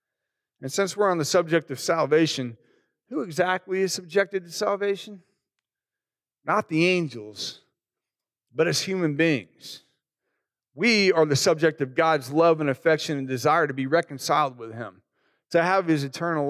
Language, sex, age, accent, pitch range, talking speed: English, male, 40-59, American, 140-190 Hz, 150 wpm